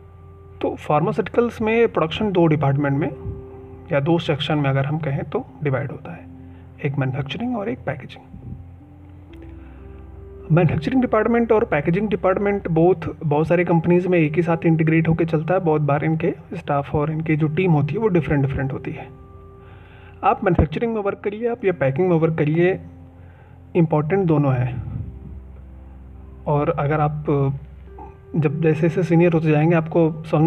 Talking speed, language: 160 wpm, Hindi